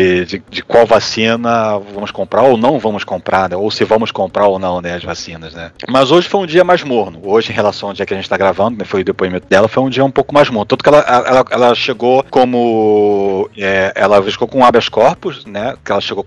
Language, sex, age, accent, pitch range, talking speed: Portuguese, male, 40-59, Brazilian, 100-130 Hz, 245 wpm